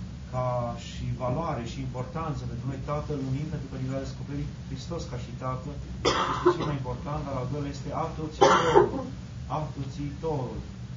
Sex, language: male, Romanian